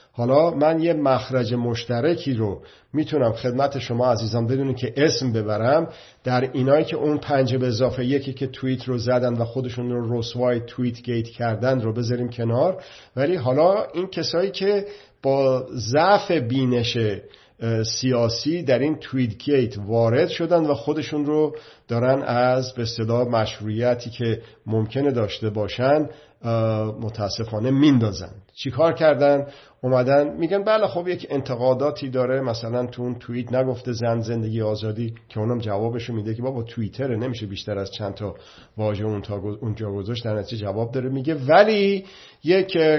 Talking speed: 150 wpm